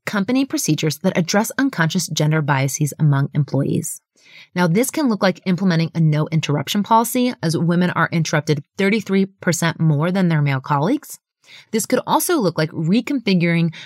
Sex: female